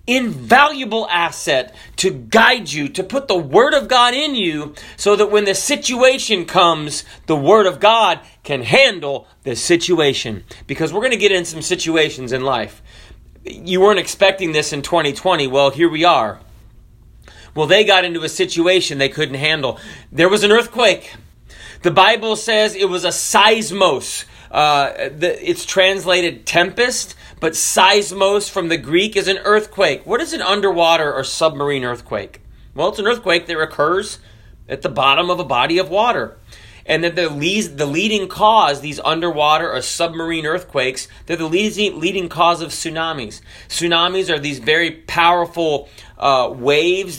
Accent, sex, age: American, male, 40-59